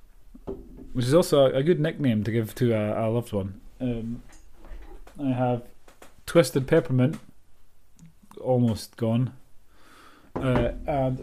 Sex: male